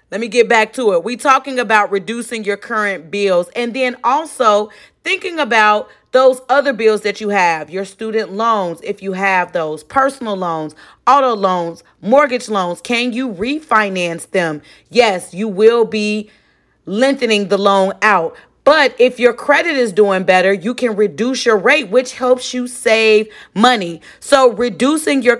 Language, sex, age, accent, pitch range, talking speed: English, female, 30-49, American, 200-255 Hz, 165 wpm